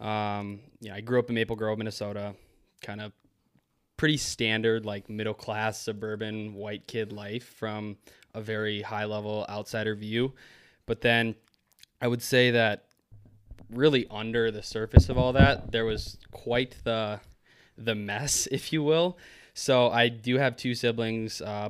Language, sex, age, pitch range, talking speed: English, male, 20-39, 105-115 Hz, 150 wpm